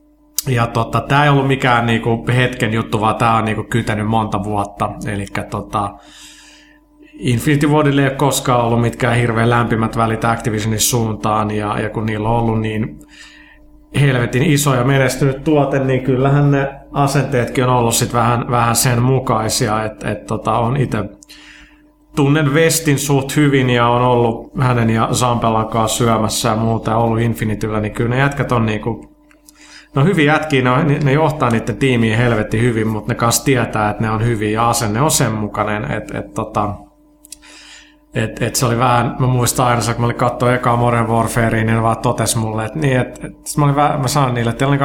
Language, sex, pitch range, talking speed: Finnish, male, 115-140 Hz, 175 wpm